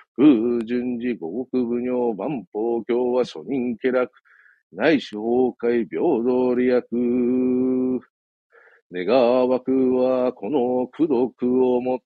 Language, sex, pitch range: Japanese, male, 110-130 Hz